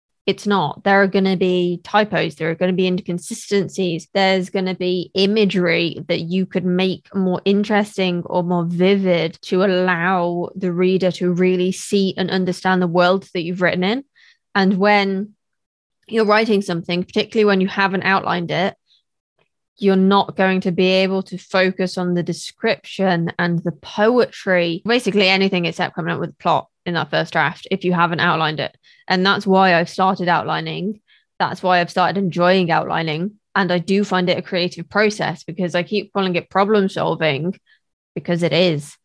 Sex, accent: female, British